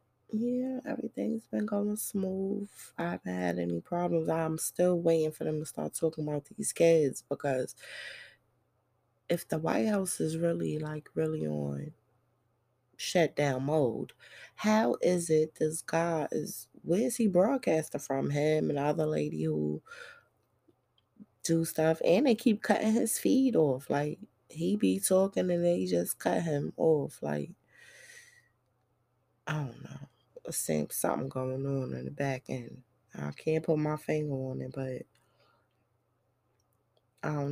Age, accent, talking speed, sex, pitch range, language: 20-39, American, 140 wpm, female, 125-175 Hz, English